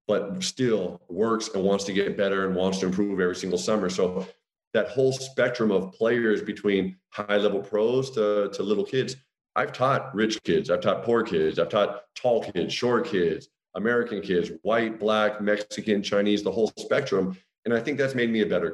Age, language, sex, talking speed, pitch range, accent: 40-59, English, male, 190 wpm, 95-115 Hz, American